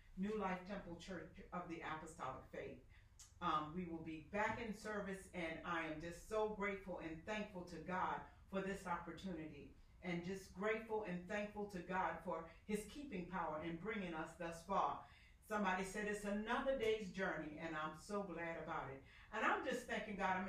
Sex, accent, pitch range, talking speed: female, American, 180-225 Hz, 180 wpm